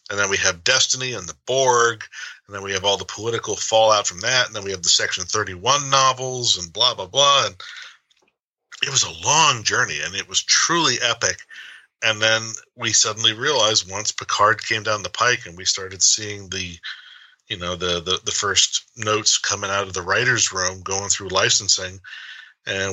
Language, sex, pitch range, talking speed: English, male, 95-115 Hz, 195 wpm